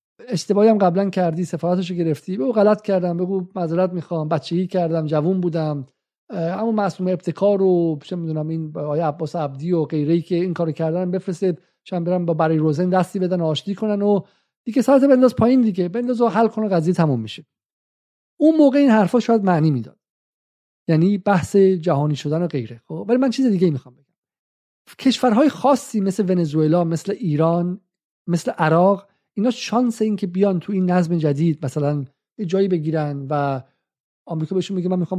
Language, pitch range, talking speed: Persian, 165-205 Hz, 175 wpm